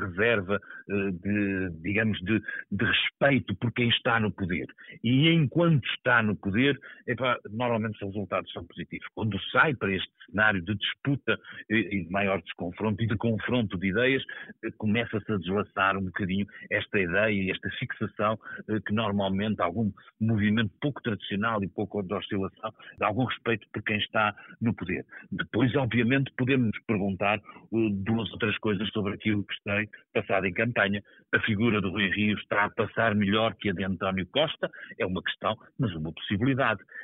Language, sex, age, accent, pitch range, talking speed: Portuguese, male, 50-69, Portuguese, 100-125 Hz, 160 wpm